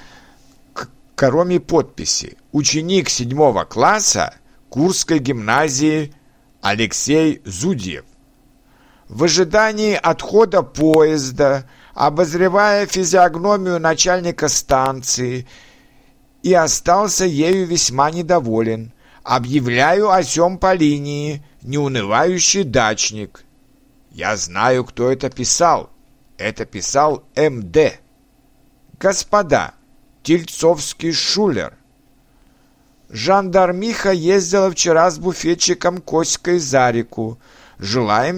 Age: 60-79